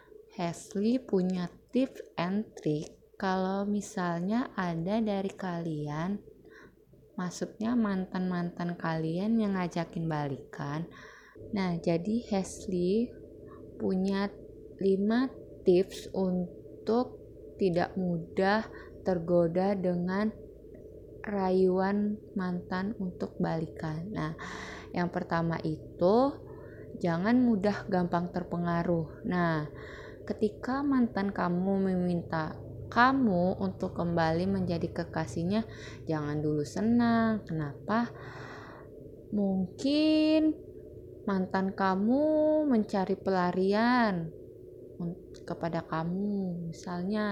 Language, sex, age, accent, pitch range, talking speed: Indonesian, female, 20-39, native, 175-210 Hz, 75 wpm